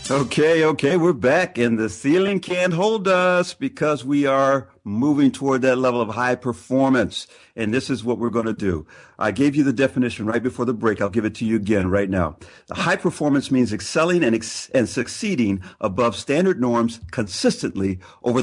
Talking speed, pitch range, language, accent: 190 wpm, 105-150 Hz, English, American